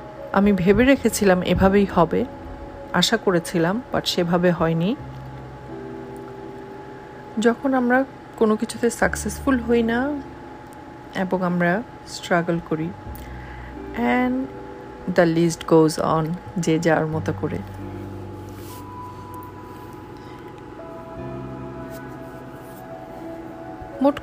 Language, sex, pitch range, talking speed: Bengali, female, 155-210 Hz, 75 wpm